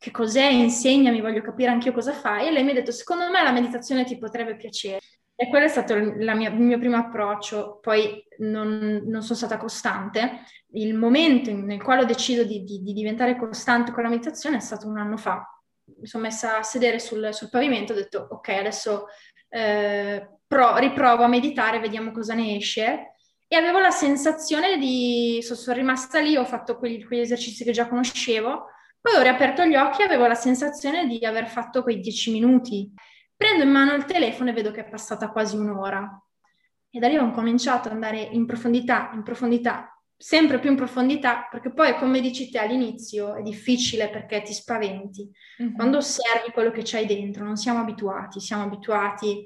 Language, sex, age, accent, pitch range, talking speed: Italian, female, 20-39, native, 215-250 Hz, 195 wpm